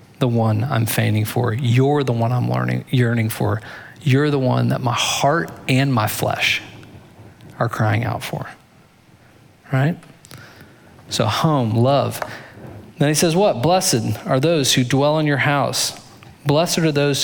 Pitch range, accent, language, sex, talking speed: 115-135 Hz, American, English, male, 150 wpm